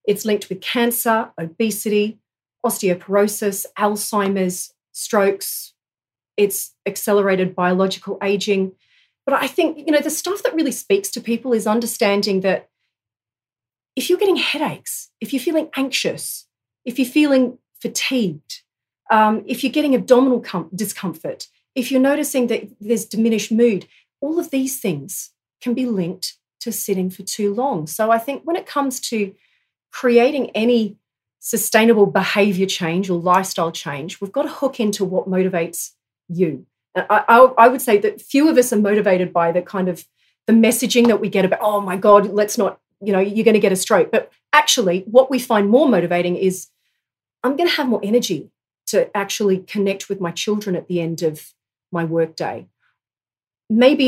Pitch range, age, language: 185-245 Hz, 40-59, English